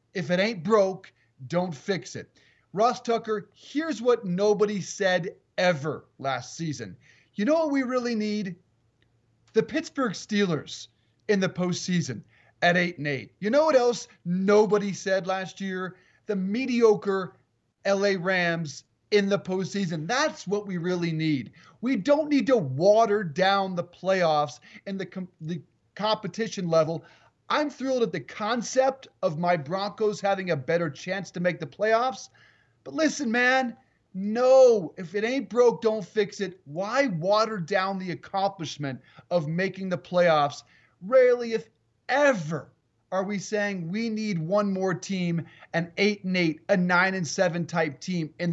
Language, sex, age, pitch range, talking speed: English, male, 30-49, 160-210 Hz, 150 wpm